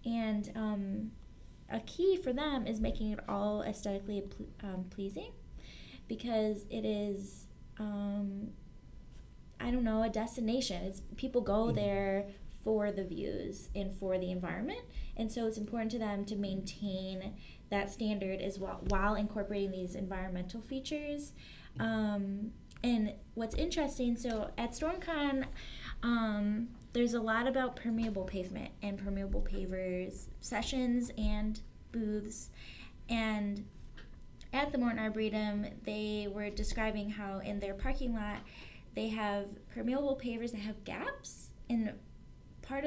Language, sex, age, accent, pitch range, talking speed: English, female, 10-29, American, 200-235 Hz, 125 wpm